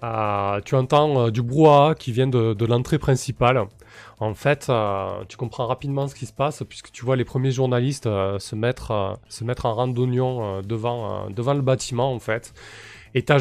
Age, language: 20-39, French